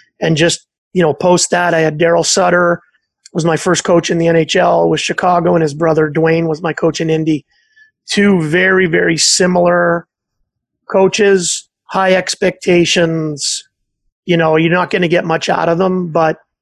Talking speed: 170 wpm